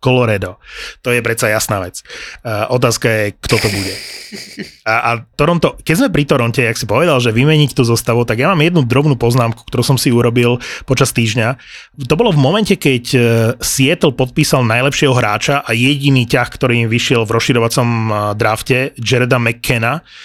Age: 30-49